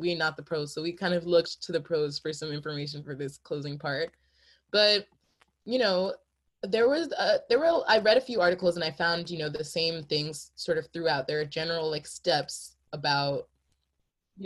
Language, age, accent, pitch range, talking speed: English, 20-39, American, 160-195 Hz, 210 wpm